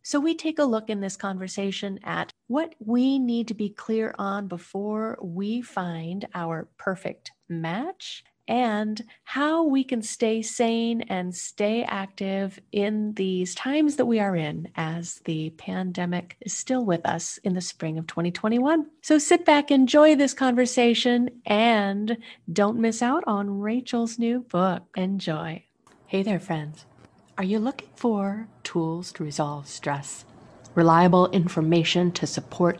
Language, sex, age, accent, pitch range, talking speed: English, female, 40-59, American, 170-235 Hz, 145 wpm